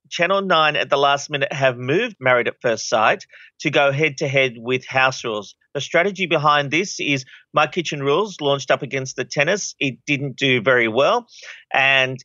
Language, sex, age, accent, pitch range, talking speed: English, male, 40-59, Australian, 130-150 Hz, 180 wpm